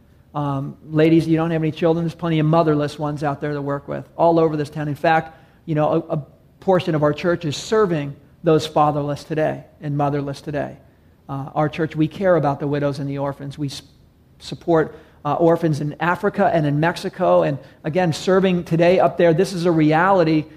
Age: 40-59